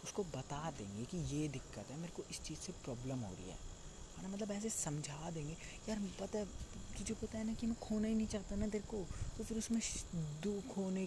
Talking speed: 215 wpm